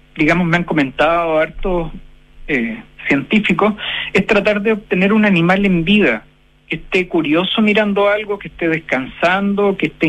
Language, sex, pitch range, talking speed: Spanish, male, 175-220 Hz, 150 wpm